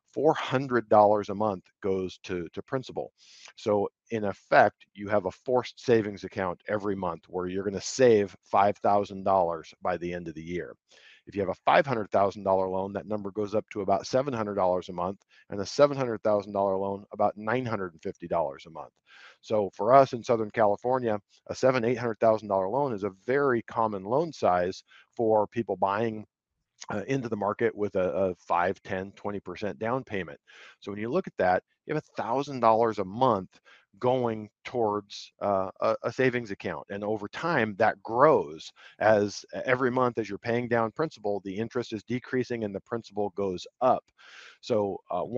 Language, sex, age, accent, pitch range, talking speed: English, male, 50-69, American, 95-120 Hz, 170 wpm